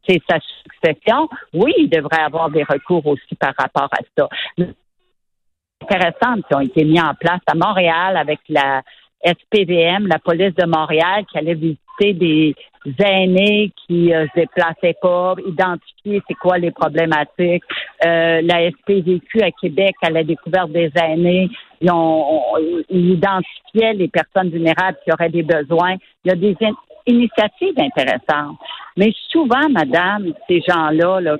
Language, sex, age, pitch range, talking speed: French, female, 50-69, 165-210 Hz, 150 wpm